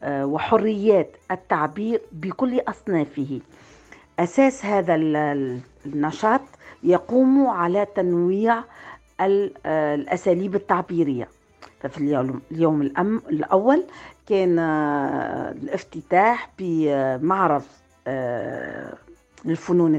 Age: 50-69